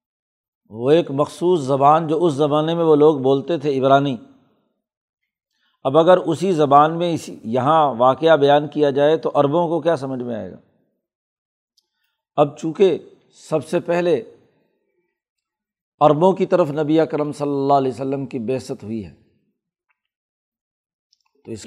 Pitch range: 140-180 Hz